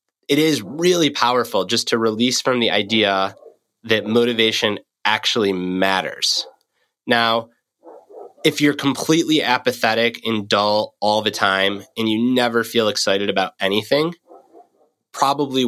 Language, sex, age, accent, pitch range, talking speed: English, male, 20-39, American, 105-130 Hz, 125 wpm